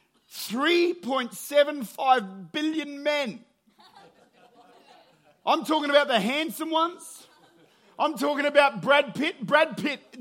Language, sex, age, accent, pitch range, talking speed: English, male, 40-59, Australian, 215-285 Hz, 95 wpm